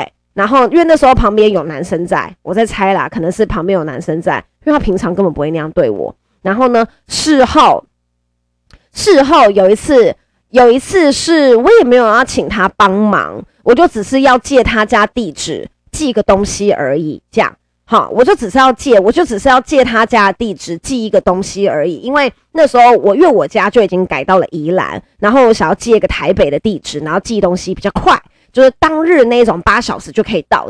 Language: Chinese